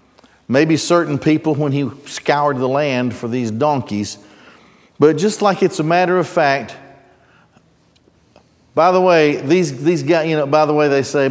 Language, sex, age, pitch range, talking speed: English, male, 50-69, 135-185 Hz, 170 wpm